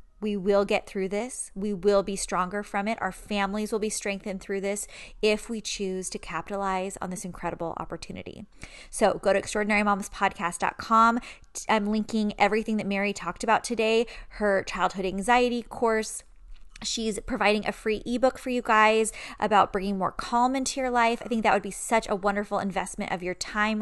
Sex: female